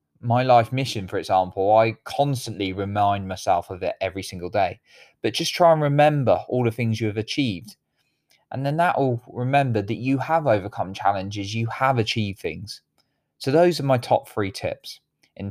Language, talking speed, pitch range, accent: English, 180 wpm, 100-125 Hz, British